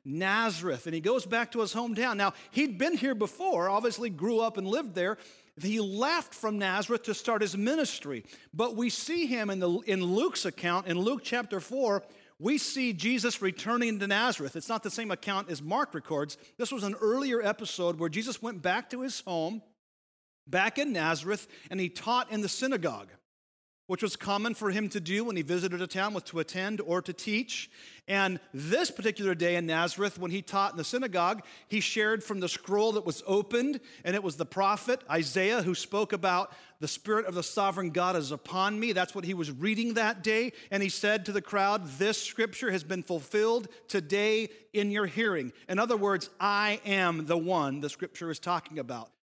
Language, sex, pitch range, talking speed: English, male, 180-225 Hz, 200 wpm